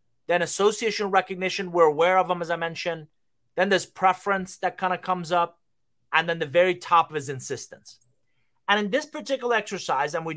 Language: English